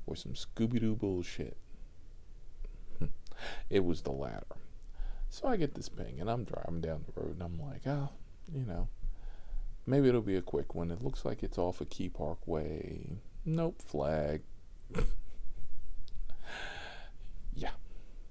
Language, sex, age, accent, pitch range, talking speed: English, male, 40-59, American, 80-130 Hz, 140 wpm